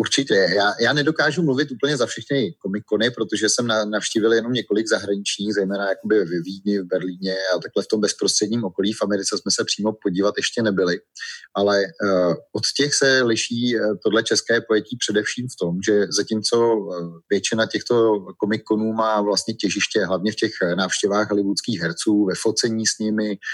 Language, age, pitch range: Czech, 30-49, 100-110 Hz